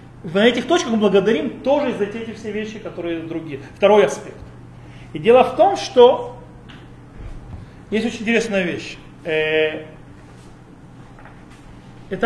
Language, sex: Russian, male